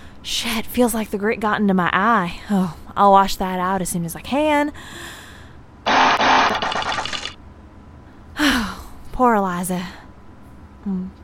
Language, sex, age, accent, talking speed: English, female, 20-39, American, 125 wpm